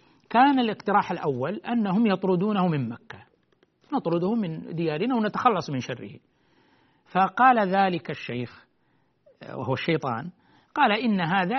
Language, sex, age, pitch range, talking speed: Arabic, male, 60-79, 160-230 Hz, 110 wpm